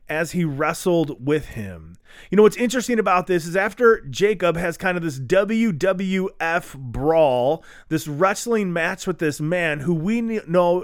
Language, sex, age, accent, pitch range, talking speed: English, male, 30-49, American, 165-220 Hz, 160 wpm